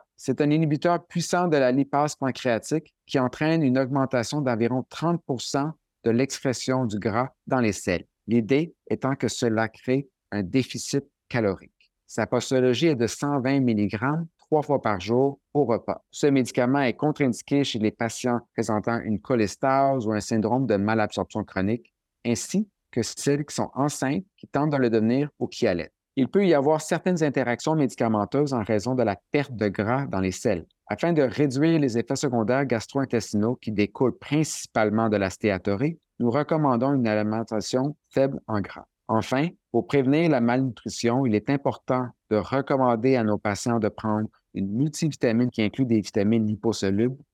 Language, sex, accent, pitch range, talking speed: English, male, Canadian, 110-140 Hz, 165 wpm